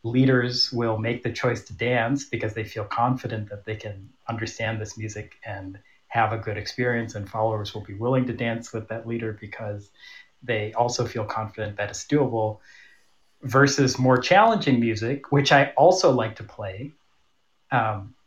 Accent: American